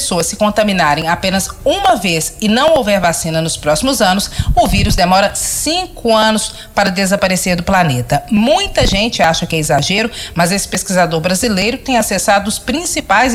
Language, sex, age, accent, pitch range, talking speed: Portuguese, female, 40-59, Brazilian, 180-245 Hz, 160 wpm